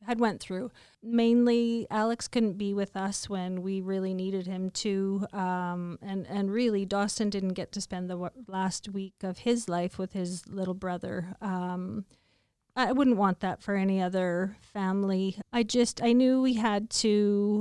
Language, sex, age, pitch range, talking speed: English, female, 30-49, 185-220 Hz, 170 wpm